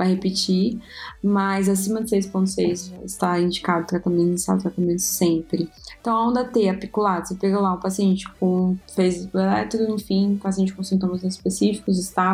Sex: female